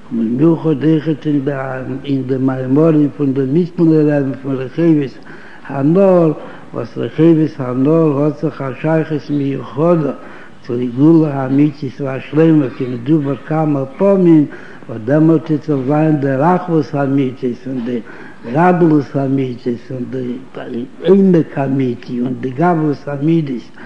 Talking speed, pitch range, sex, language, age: 90 wpm, 135-155 Hz, male, Hebrew, 60-79